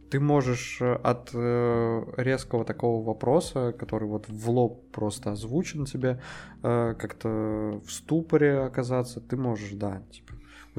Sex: male